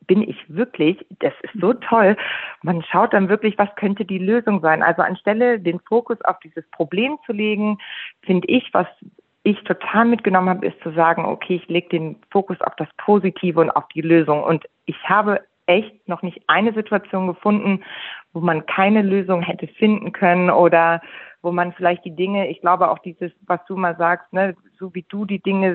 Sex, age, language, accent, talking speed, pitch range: female, 40-59, German, German, 195 wpm, 170-205 Hz